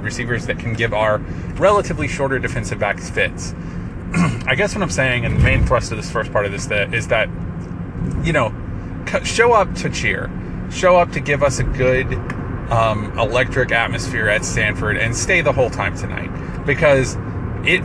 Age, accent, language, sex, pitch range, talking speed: 30-49, American, English, male, 110-135 Hz, 180 wpm